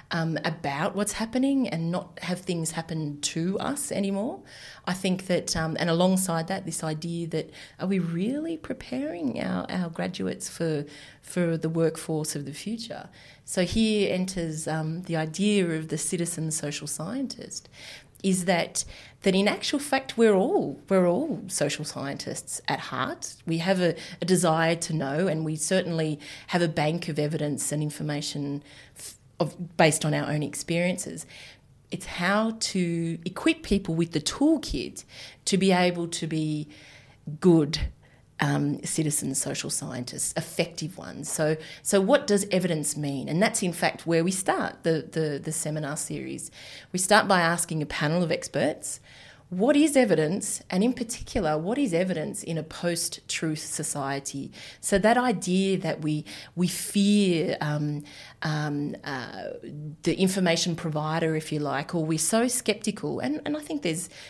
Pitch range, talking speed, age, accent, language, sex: 150-190 Hz, 155 wpm, 30-49, Australian, English, female